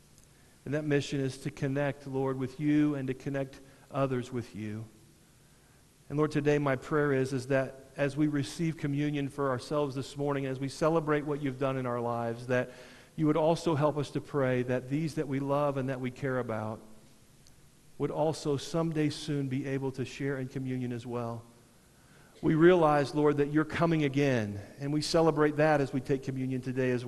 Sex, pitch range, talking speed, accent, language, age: male, 120-150 Hz, 195 wpm, American, English, 50-69